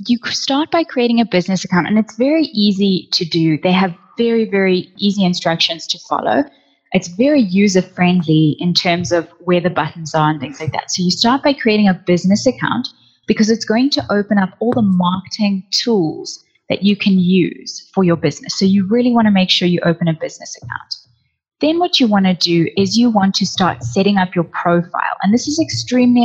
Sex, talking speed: female, 210 wpm